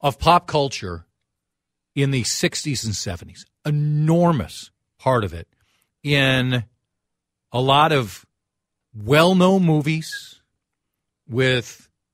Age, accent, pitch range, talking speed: 40-59, American, 105-160 Hz, 95 wpm